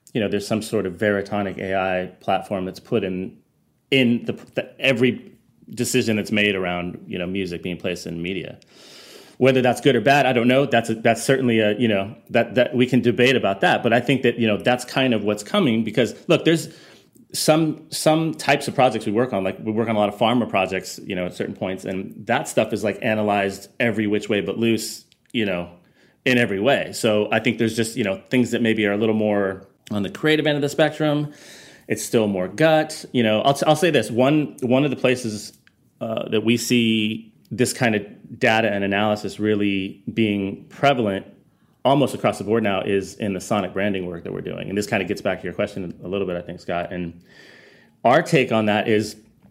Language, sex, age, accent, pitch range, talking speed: English, male, 30-49, American, 100-125 Hz, 225 wpm